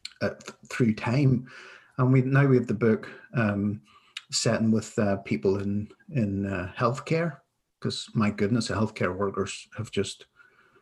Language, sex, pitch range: English, male, 105-125 Hz